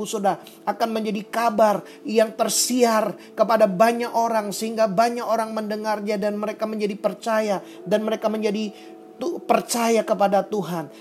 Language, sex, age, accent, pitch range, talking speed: Indonesian, male, 30-49, native, 200-220 Hz, 125 wpm